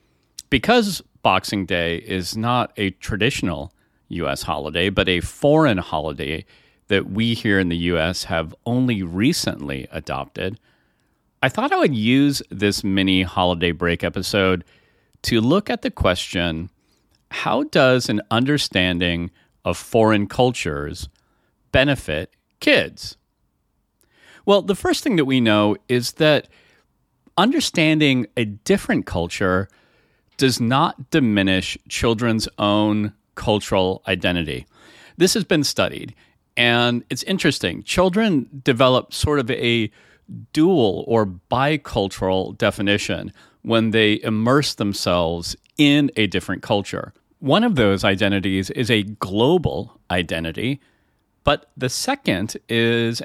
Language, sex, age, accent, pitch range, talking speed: English, male, 40-59, American, 95-135 Hz, 115 wpm